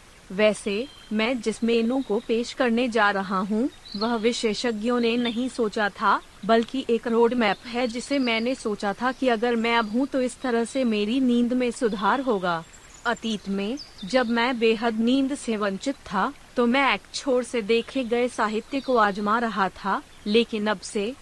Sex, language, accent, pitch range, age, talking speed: female, Hindi, native, 215-250 Hz, 30-49, 180 wpm